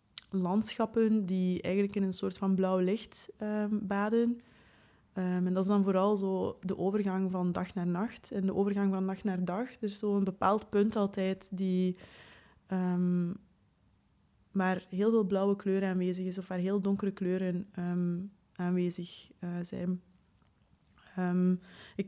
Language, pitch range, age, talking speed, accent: Dutch, 185-210 Hz, 20-39, 155 wpm, Dutch